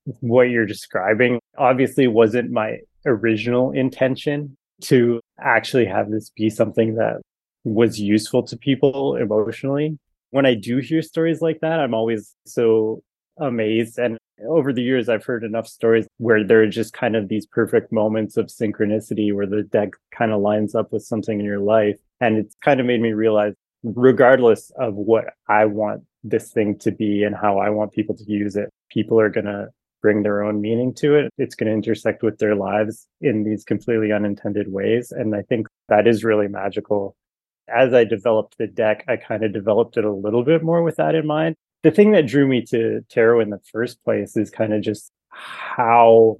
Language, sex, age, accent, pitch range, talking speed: English, male, 20-39, American, 105-130 Hz, 195 wpm